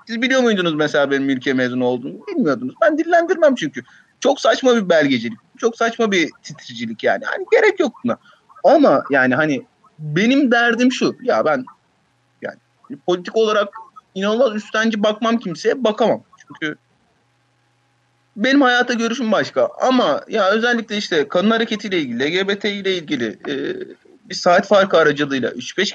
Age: 30-49